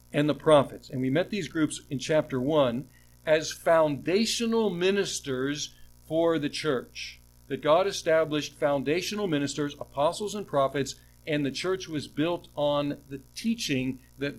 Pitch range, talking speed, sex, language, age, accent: 125-165 Hz, 140 wpm, male, English, 60-79, American